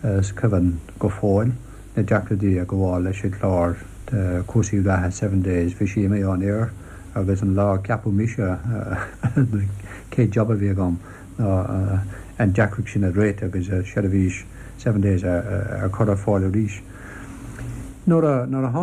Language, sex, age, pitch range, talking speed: English, male, 60-79, 95-115 Hz, 165 wpm